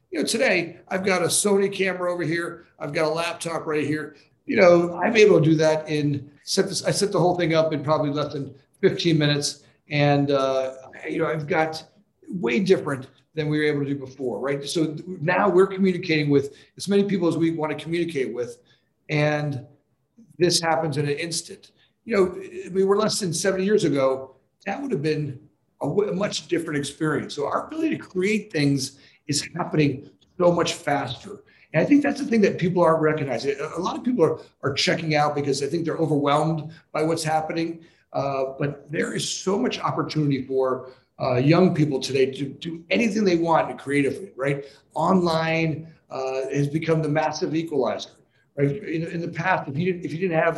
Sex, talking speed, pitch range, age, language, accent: male, 195 wpm, 145-185 Hz, 50-69, English, American